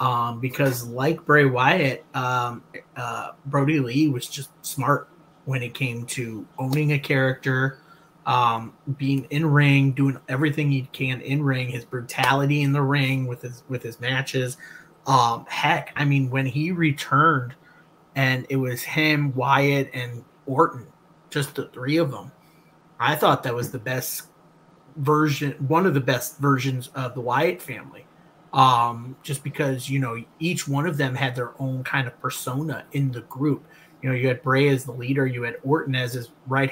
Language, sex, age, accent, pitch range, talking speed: English, male, 30-49, American, 130-145 Hz, 175 wpm